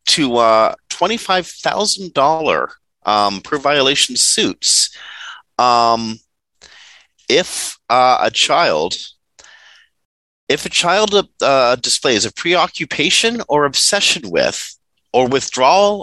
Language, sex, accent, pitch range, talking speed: English, male, American, 100-160 Hz, 90 wpm